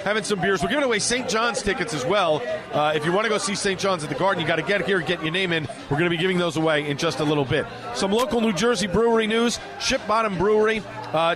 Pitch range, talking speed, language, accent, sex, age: 165-210 Hz, 290 wpm, English, American, male, 40-59